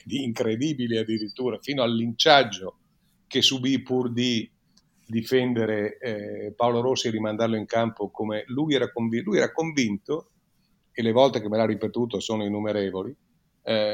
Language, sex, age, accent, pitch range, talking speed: Italian, male, 50-69, native, 110-145 Hz, 145 wpm